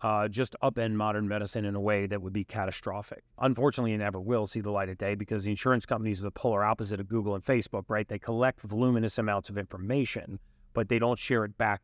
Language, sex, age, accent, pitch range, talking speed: English, male, 40-59, American, 105-120 Hz, 235 wpm